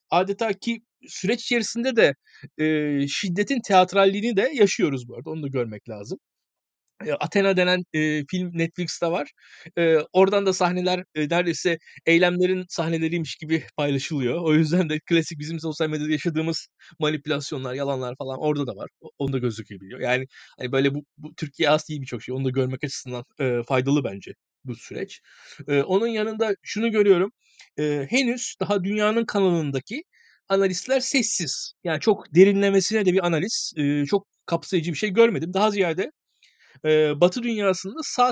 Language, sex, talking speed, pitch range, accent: Turkish, male, 155 wpm, 145-205 Hz, native